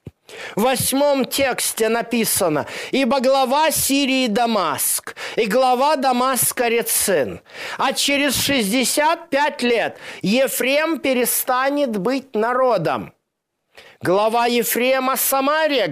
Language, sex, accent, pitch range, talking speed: Russian, male, native, 195-260 Hz, 90 wpm